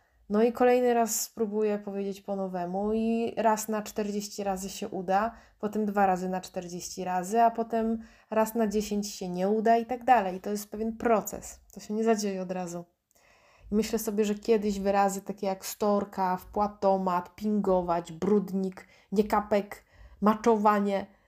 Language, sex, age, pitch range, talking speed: Polish, female, 20-39, 195-230 Hz, 160 wpm